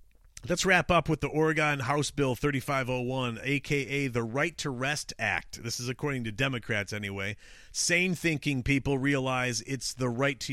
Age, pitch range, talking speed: 40-59, 115-150 Hz, 165 wpm